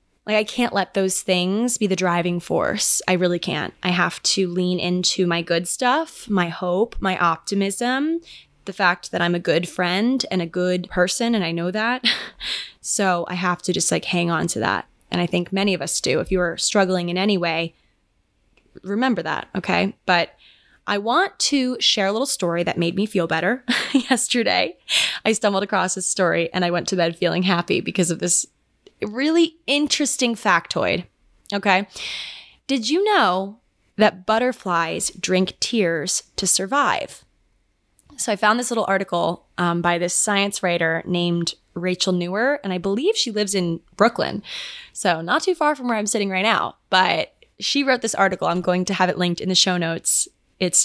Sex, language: female, English